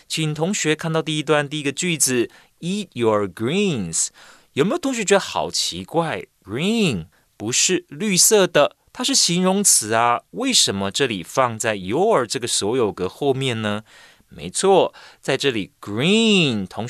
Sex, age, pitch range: male, 30-49, 115-180 Hz